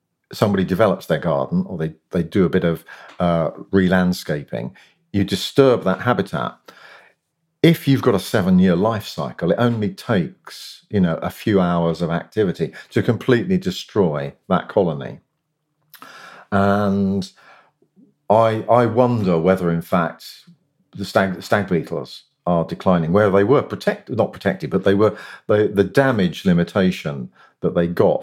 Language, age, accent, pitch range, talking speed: English, 50-69, British, 85-115 Hz, 145 wpm